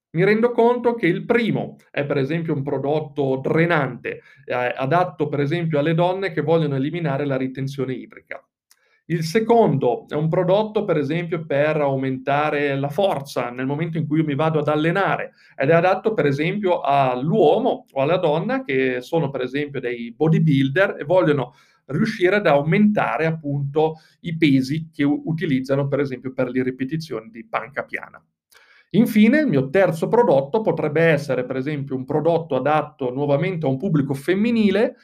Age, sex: 40-59, male